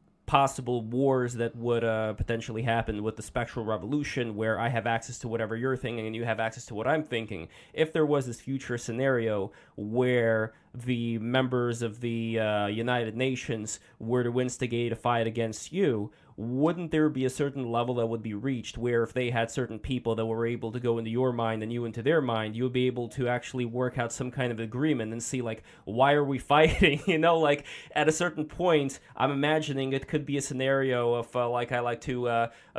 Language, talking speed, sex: English, 210 wpm, male